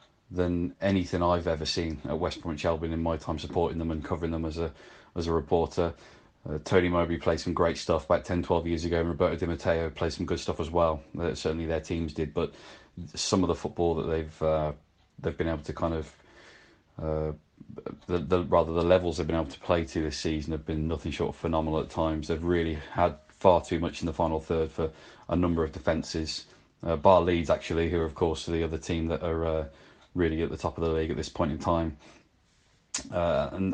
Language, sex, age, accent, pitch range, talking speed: English, male, 20-39, British, 80-90 Hz, 230 wpm